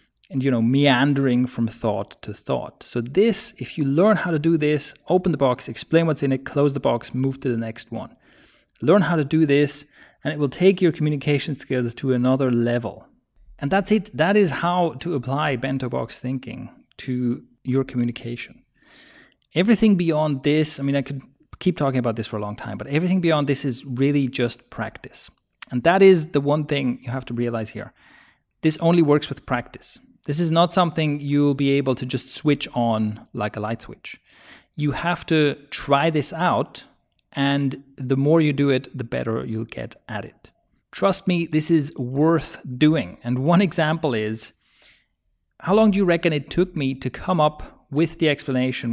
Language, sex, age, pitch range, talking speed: English, male, 30-49, 125-160 Hz, 195 wpm